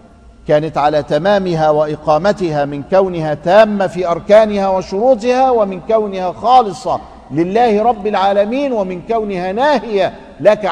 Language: Arabic